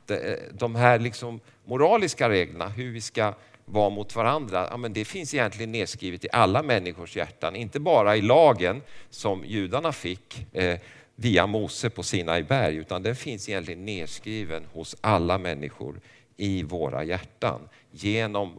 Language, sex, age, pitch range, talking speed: Swedish, male, 50-69, 100-125 Hz, 150 wpm